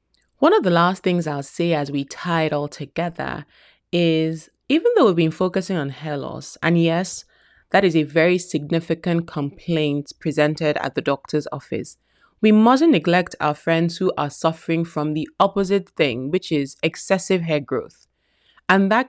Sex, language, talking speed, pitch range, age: female, English, 170 wpm, 150-185 Hz, 20-39